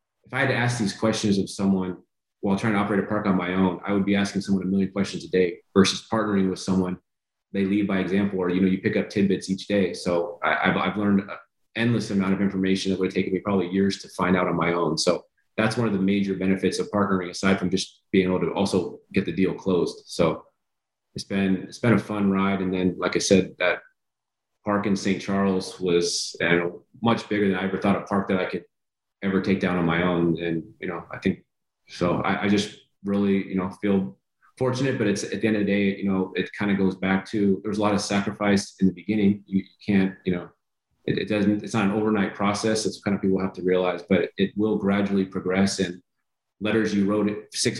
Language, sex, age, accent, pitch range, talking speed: English, male, 30-49, American, 95-105 Hz, 240 wpm